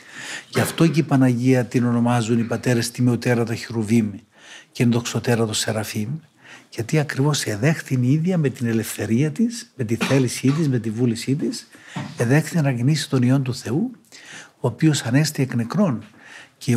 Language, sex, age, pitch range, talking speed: Greek, male, 60-79, 115-145 Hz, 160 wpm